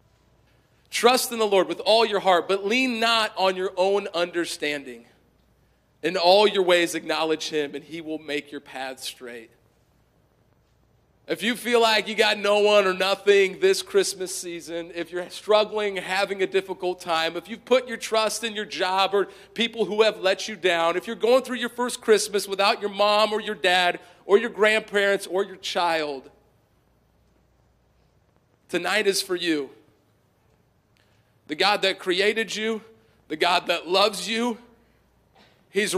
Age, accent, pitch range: 40-59, American, 170-220 Hz